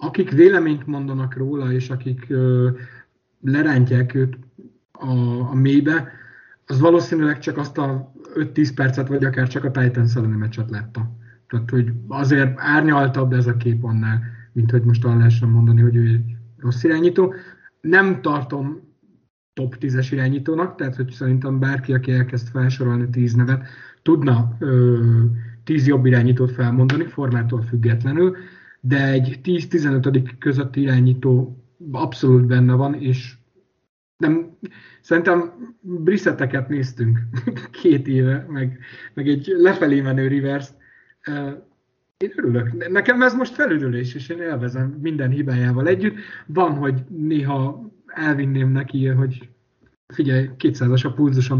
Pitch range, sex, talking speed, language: 125-150 Hz, male, 125 wpm, Hungarian